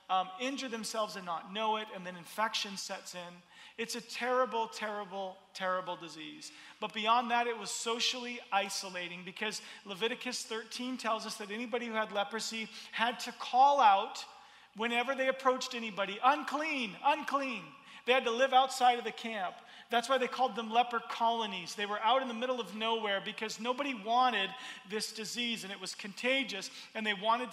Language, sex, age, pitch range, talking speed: Dutch, male, 40-59, 205-250 Hz, 175 wpm